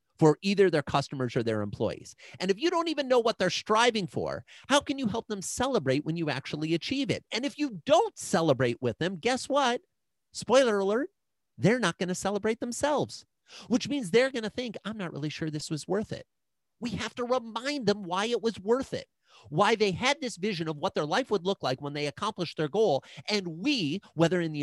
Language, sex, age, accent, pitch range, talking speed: English, male, 40-59, American, 140-210 Hz, 220 wpm